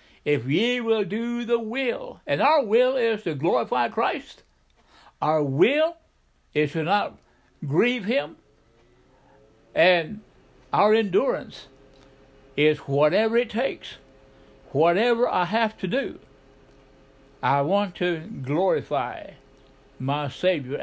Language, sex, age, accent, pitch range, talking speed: English, male, 60-79, American, 135-205 Hz, 110 wpm